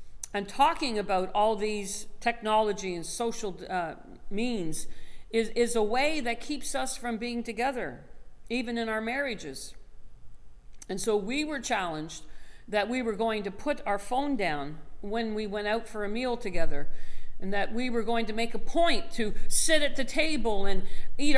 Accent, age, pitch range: American, 50-69, 185-250 Hz